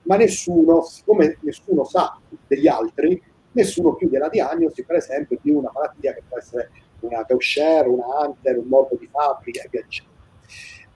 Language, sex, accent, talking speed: Italian, male, native, 160 wpm